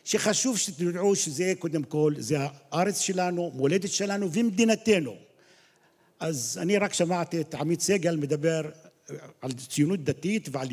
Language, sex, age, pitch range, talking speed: Hebrew, male, 50-69, 160-200 Hz, 130 wpm